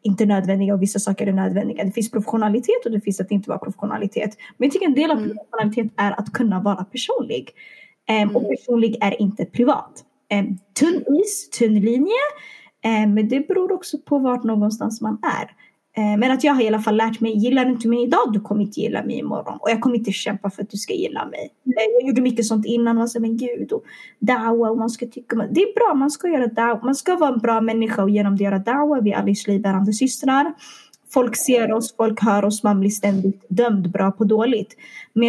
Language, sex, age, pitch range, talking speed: Swedish, female, 20-39, 210-285 Hz, 215 wpm